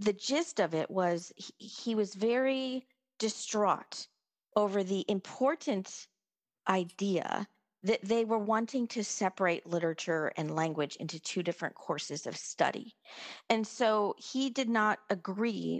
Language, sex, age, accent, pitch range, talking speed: English, female, 40-59, American, 185-235 Hz, 130 wpm